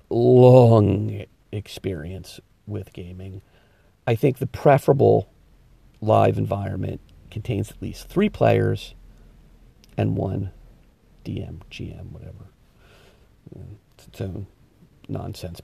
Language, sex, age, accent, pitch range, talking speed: English, male, 50-69, American, 95-130 Hz, 90 wpm